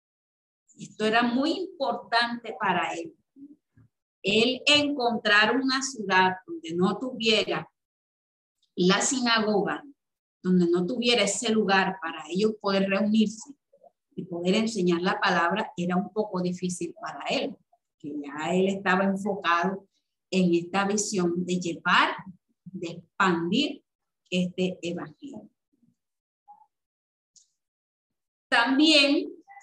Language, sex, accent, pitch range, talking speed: Spanish, female, American, 185-265 Hz, 100 wpm